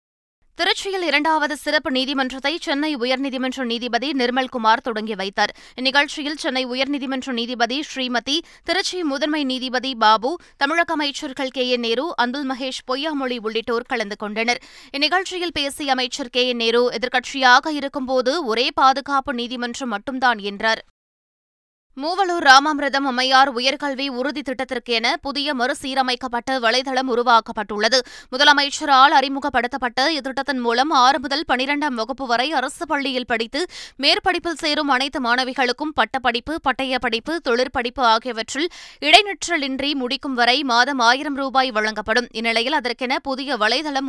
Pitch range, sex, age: 245-285 Hz, female, 20-39